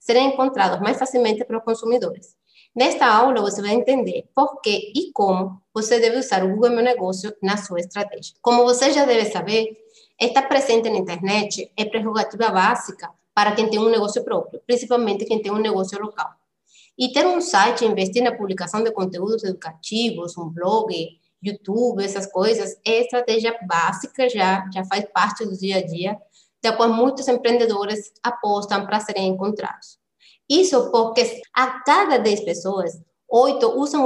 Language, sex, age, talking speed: Portuguese, female, 20-39, 160 wpm